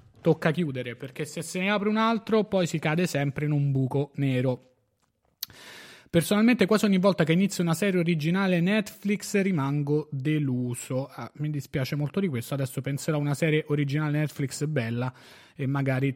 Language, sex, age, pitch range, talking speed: Italian, male, 30-49, 135-170 Hz, 165 wpm